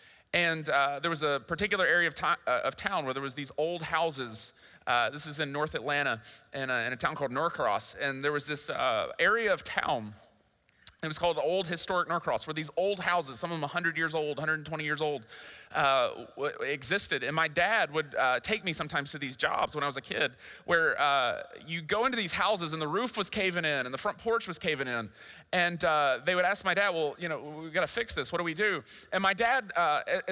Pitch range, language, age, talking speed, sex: 155-200 Hz, English, 30-49, 230 wpm, male